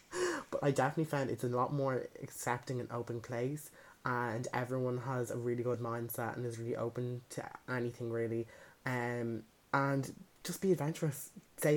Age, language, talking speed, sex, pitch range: 20-39, English, 165 wpm, male, 125-165 Hz